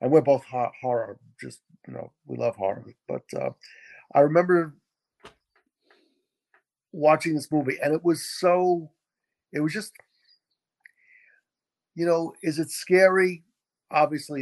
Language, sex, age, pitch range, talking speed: English, male, 50-69, 125-170 Hz, 125 wpm